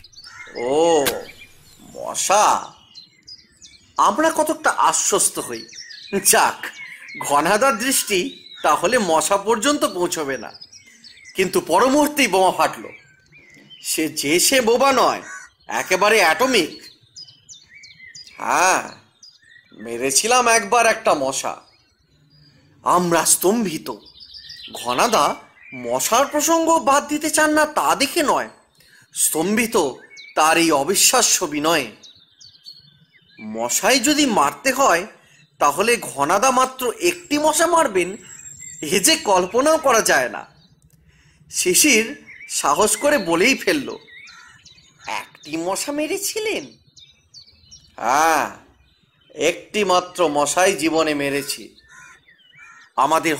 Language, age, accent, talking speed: Bengali, 30-49, native, 85 wpm